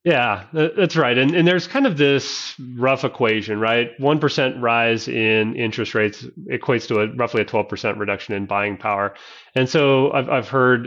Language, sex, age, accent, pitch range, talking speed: English, male, 30-49, American, 105-125 Hz, 190 wpm